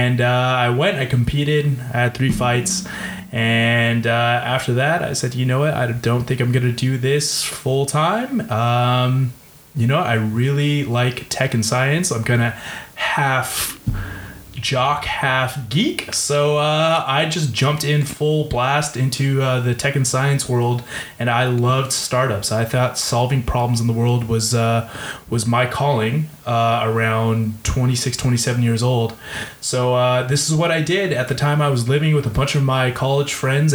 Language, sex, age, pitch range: English, male, 20-39, 120-140 Hz